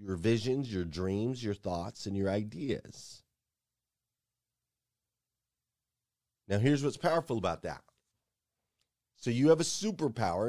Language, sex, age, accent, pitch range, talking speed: English, male, 30-49, American, 120-170 Hz, 115 wpm